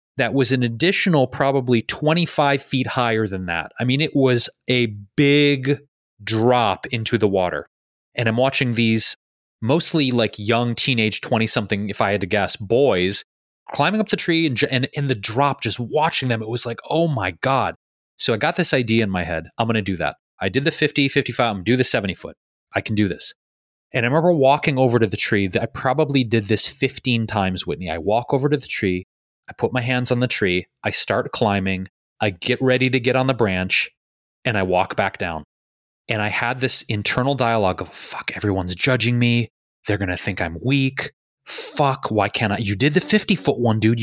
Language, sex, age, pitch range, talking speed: English, male, 30-49, 105-145 Hz, 205 wpm